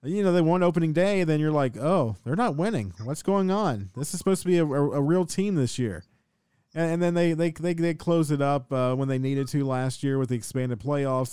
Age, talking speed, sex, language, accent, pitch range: 40-59, 260 wpm, male, English, American, 125-155 Hz